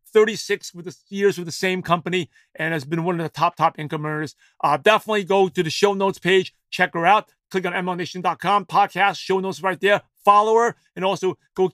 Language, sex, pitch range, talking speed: English, male, 165-205 Hz, 205 wpm